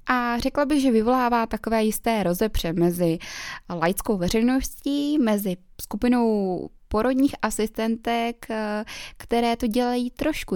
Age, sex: 20-39, female